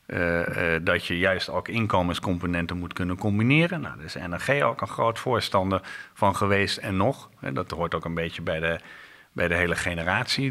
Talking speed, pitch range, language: 195 wpm, 85-120 Hz, Dutch